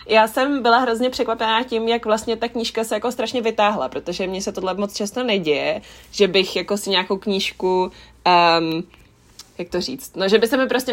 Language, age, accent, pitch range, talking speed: Czech, 20-39, native, 185-215 Hz, 205 wpm